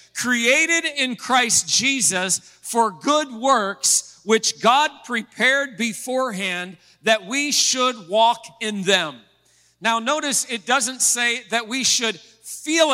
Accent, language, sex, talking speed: American, English, male, 120 wpm